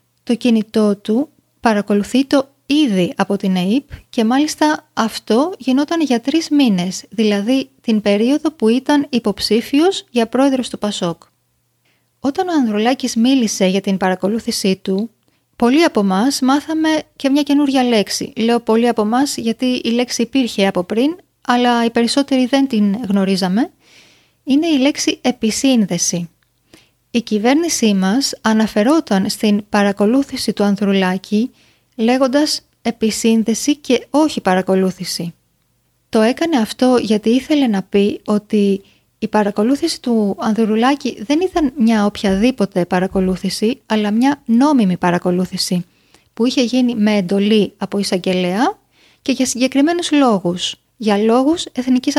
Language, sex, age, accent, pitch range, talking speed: Greek, female, 30-49, native, 200-270 Hz, 125 wpm